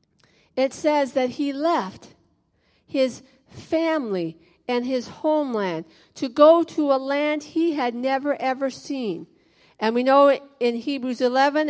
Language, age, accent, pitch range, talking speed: English, 50-69, American, 220-295 Hz, 135 wpm